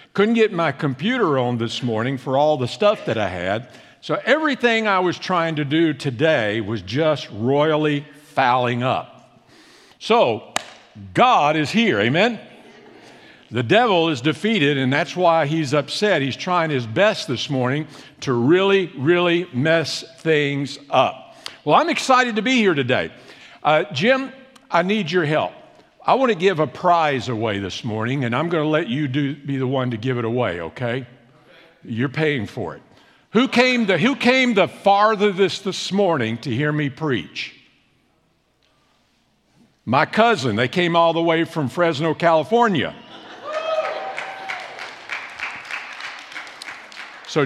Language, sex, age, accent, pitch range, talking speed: English, male, 60-79, American, 130-190 Hz, 145 wpm